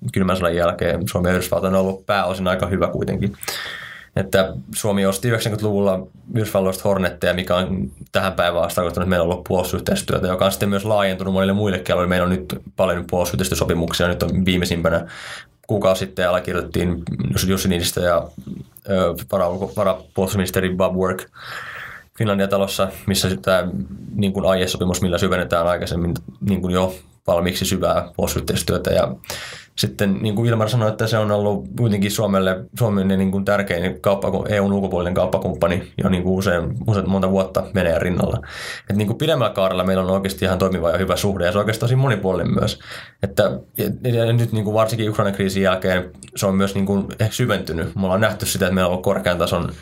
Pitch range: 90-100 Hz